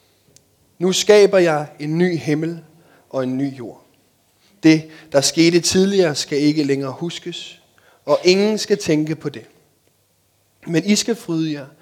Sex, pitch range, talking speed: male, 110-160 Hz, 145 wpm